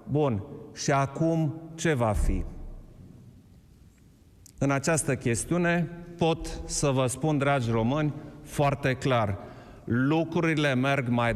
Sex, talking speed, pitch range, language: male, 105 wpm, 115-145 Hz, Romanian